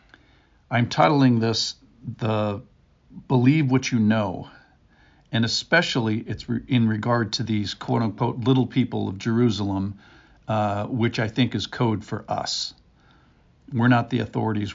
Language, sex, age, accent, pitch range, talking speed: English, male, 50-69, American, 105-125 Hz, 130 wpm